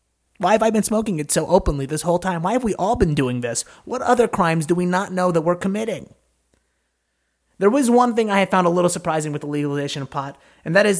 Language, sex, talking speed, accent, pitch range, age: English, male, 250 wpm, American, 145-190 Hz, 30-49